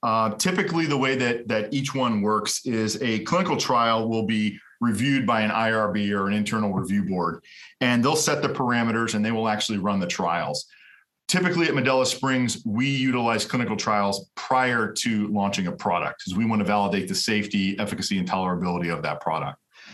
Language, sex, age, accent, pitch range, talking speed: English, male, 40-59, American, 105-130 Hz, 185 wpm